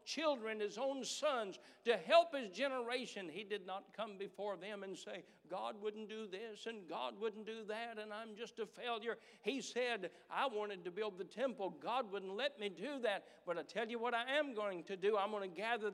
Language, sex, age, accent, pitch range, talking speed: English, male, 60-79, American, 180-230 Hz, 220 wpm